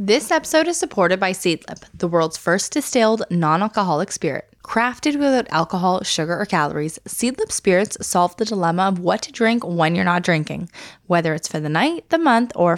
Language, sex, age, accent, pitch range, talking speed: English, female, 10-29, American, 175-240 Hz, 185 wpm